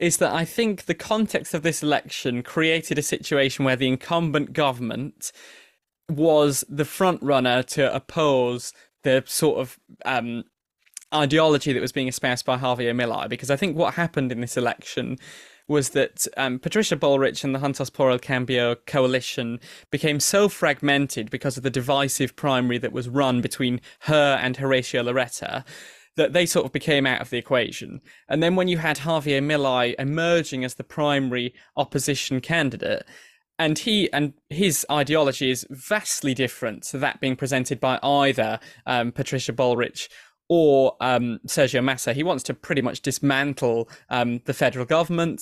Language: English